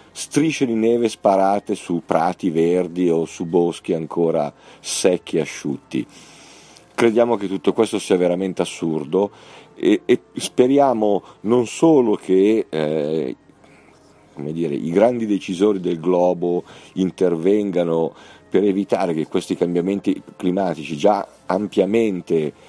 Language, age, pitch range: Italian, 50-69, 85-105 Hz